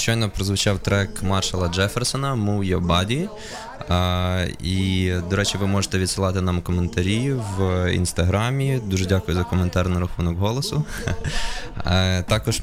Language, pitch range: Ukrainian, 90-100 Hz